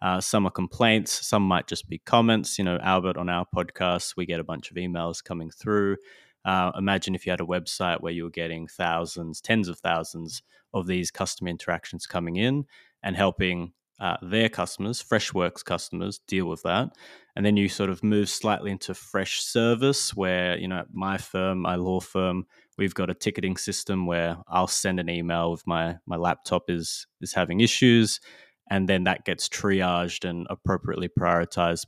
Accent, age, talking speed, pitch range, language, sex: Australian, 20-39, 185 wpm, 90-105 Hz, English, male